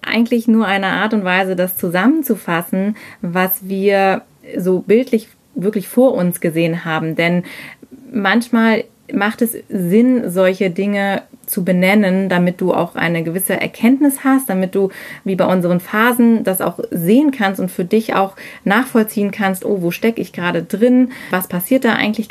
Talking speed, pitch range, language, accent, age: 160 wpm, 180-225 Hz, German, German, 20-39